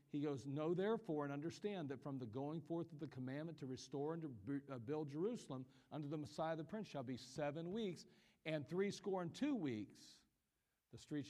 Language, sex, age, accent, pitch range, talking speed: English, male, 40-59, American, 140-185 Hz, 190 wpm